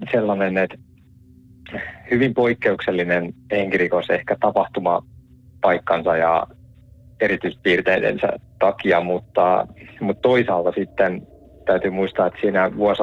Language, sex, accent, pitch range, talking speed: Finnish, male, native, 85-100 Hz, 85 wpm